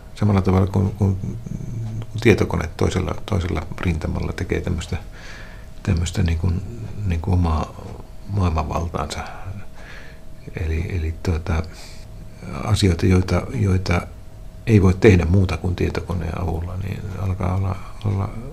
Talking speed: 105 wpm